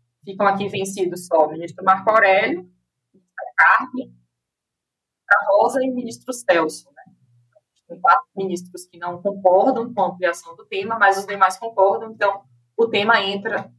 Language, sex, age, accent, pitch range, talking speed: Portuguese, female, 20-39, Brazilian, 165-225 Hz, 155 wpm